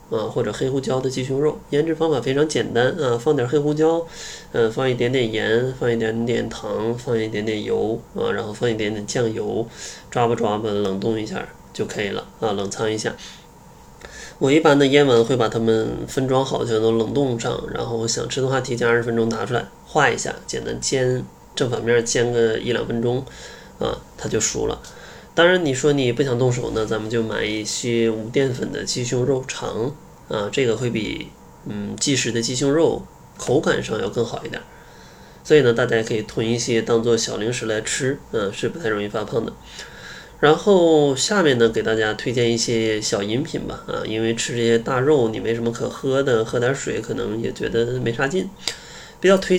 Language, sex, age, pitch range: Chinese, male, 20-39, 110-135 Hz